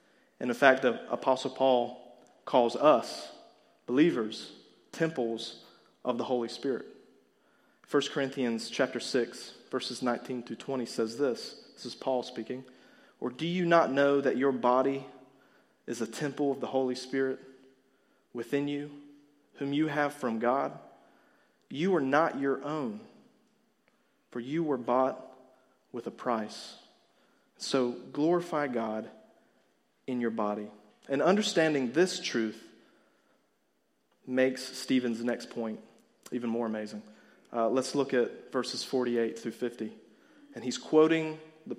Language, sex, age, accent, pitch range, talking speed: English, male, 30-49, American, 120-150 Hz, 130 wpm